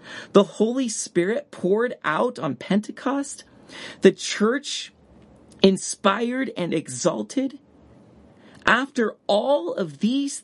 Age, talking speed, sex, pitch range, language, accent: 40-59, 90 wpm, male, 135-225 Hz, English, American